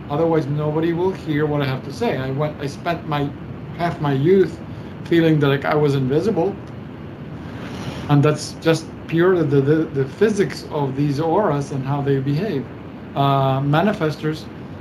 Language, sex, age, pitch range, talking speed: English, male, 50-69, 145-165 Hz, 160 wpm